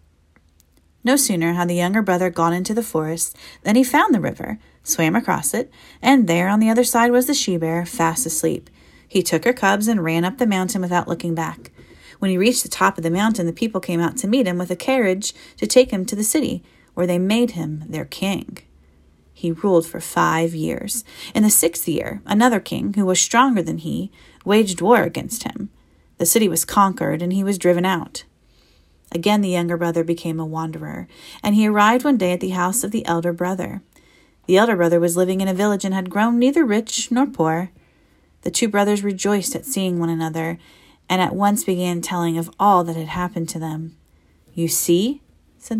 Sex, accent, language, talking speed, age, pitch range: female, American, English, 205 wpm, 30-49, 165-210 Hz